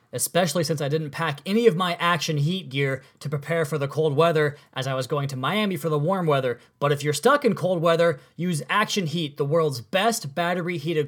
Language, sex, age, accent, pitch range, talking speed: English, male, 20-39, American, 150-180 Hz, 225 wpm